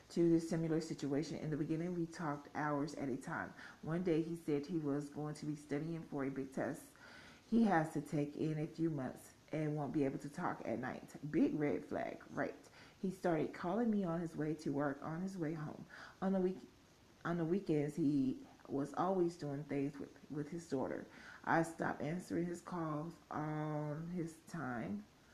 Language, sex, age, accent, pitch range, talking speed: English, female, 30-49, American, 145-170 Hz, 195 wpm